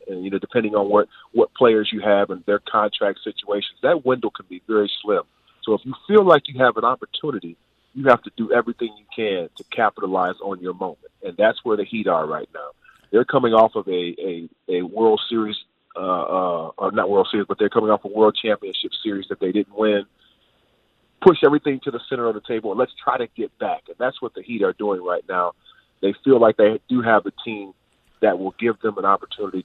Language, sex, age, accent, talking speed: English, male, 40-59, American, 225 wpm